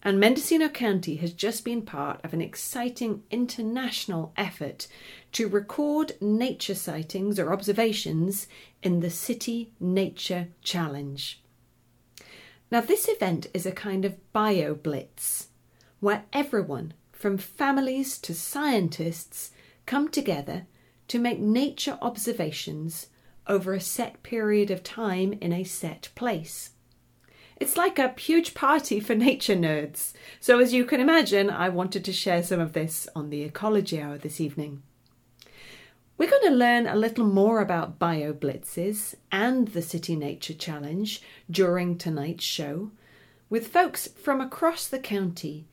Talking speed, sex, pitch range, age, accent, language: 135 wpm, female, 165-235 Hz, 30-49, British, English